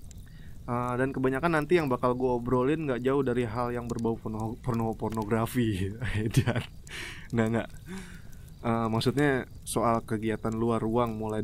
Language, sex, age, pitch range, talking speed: Indonesian, male, 20-39, 110-130 Hz, 140 wpm